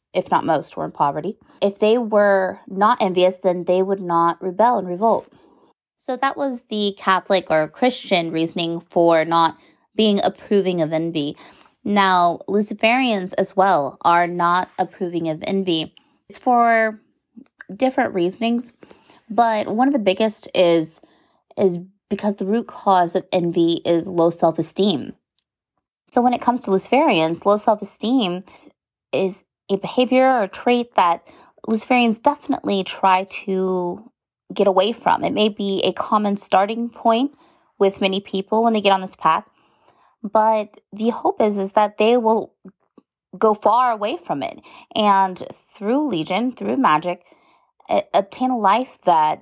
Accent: American